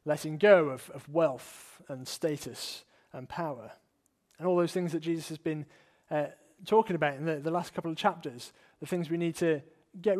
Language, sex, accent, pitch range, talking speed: English, male, British, 145-175 Hz, 195 wpm